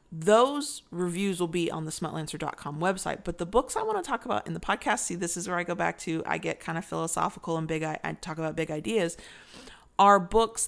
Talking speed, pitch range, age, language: 230 wpm, 160-195 Hz, 30-49, English